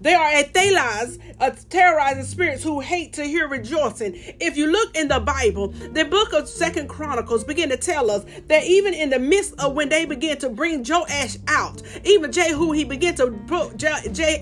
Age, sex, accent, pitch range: 40-59, female, American, 280-370 Hz